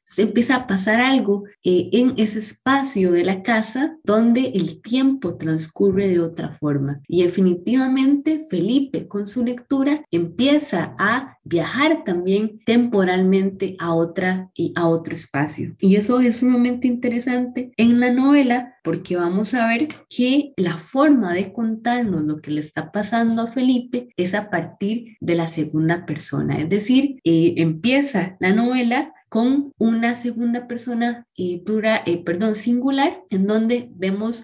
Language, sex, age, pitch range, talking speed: Spanish, female, 20-39, 175-245 Hz, 150 wpm